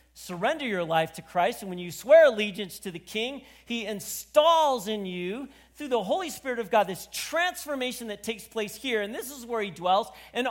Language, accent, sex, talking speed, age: English, American, male, 205 wpm, 40-59